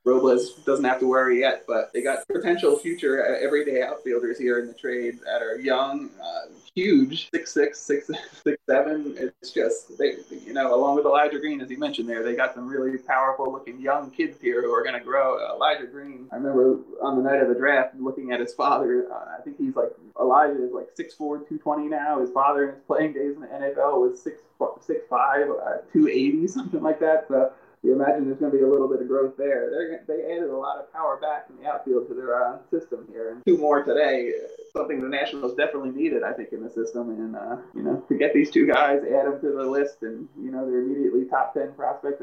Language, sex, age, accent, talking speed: English, male, 20-39, American, 230 wpm